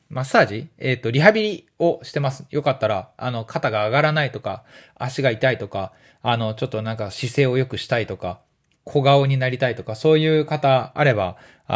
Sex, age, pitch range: male, 20-39, 115-150 Hz